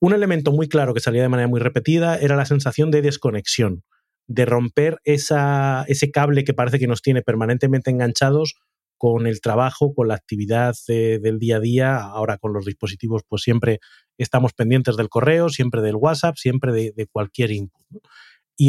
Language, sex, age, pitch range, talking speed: Spanish, male, 30-49, 110-140 Hz, 185 wpm